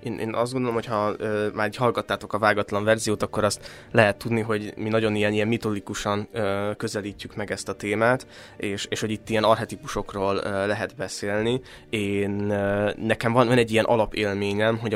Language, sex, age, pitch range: Hungarian, male, 20-39, 100-110 Hz